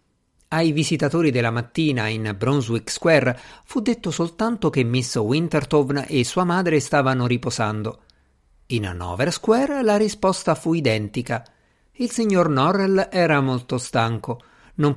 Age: 50-69